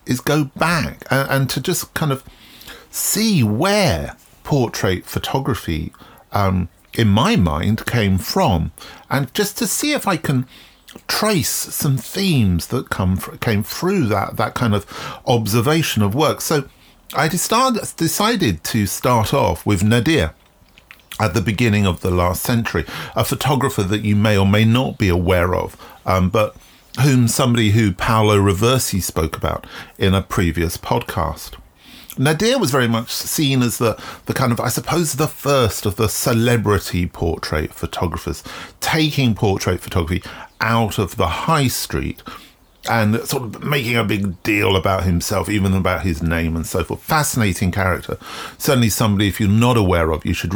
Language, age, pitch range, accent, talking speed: English, 40-59, 95-130 Hz, British, 160 wpm